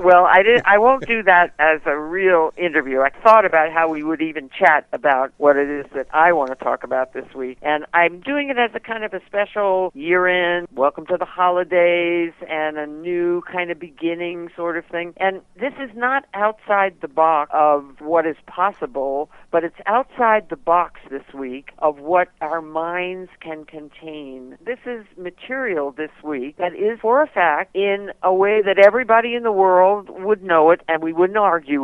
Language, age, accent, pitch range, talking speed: English, 50-69, American, 145-195 Hz, 195 wpm